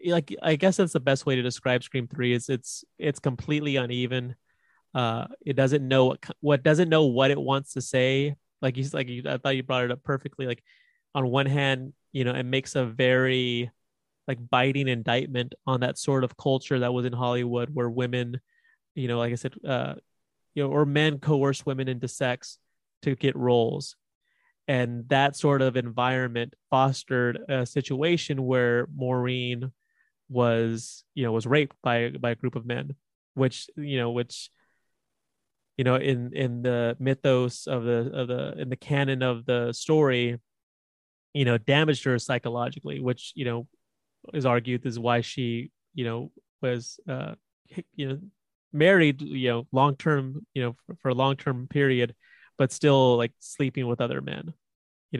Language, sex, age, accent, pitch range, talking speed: English, male, 30-49, American, 125-140 Hz, 175 wpm